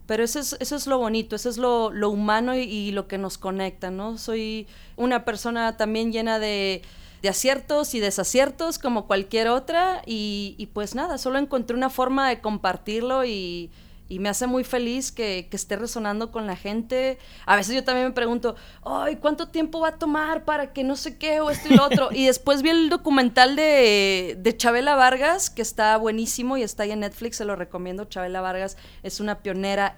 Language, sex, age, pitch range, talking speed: English, female, 30-49, 205-260 Hz, 205 wpm